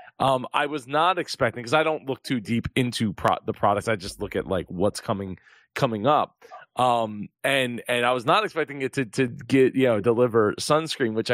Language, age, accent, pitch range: English, 20-39, American, 110-140 Hz